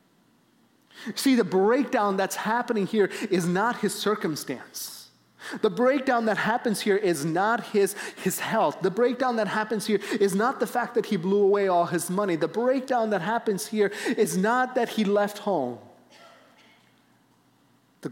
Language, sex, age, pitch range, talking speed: English, male, 30-49, 175-230 Hz, 160 wpm